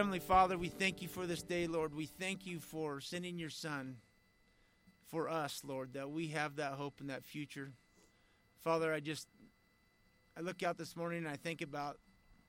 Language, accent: English, American